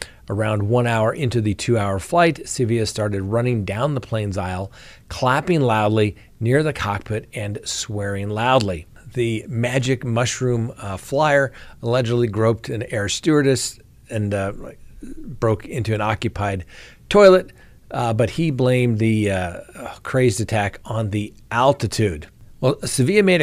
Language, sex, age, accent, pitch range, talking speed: English, male, 50-69, American, 100-125 Hz, 140 wpm